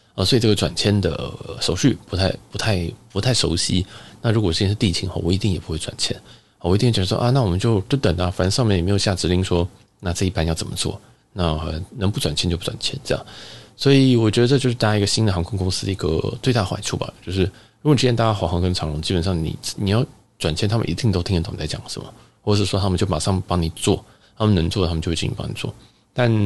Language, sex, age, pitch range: Chinese, male, 20-39, 90-115 Hz